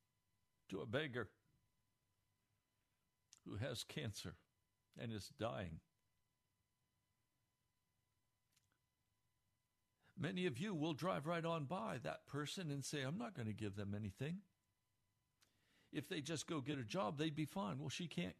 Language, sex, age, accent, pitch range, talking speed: English, male, 60-79, American, 100-135 Hz, 135 wpm